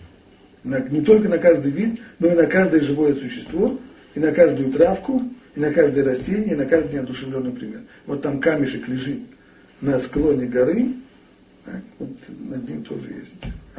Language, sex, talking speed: Russian, male, 165 wpm